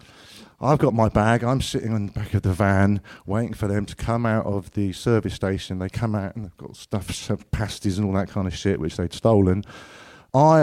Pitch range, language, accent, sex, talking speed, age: 105-130 Hz, English, British, male, 230 wpm, 50-69